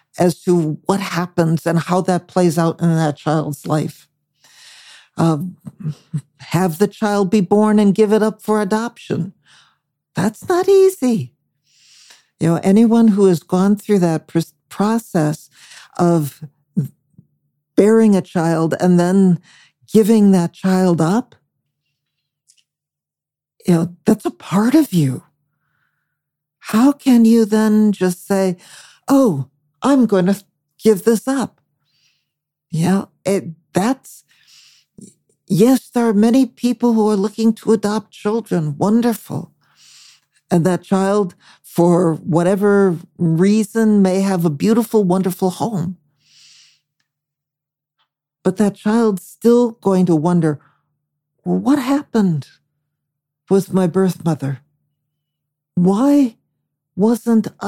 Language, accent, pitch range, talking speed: English, American, 150-215 Hz, 110 wpm